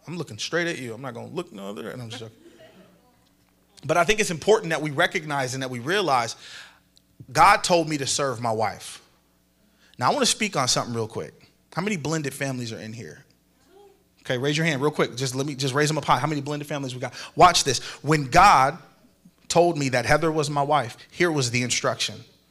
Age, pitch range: 30-49, 125-165 Hz